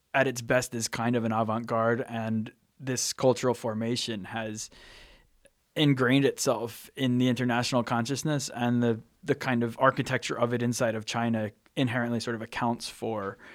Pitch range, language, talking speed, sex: 110-125 Hz, English, 155 wpm, male